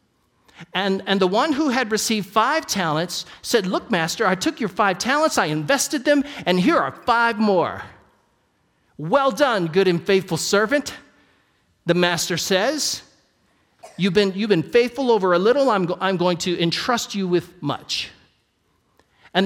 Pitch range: 175-235 Hz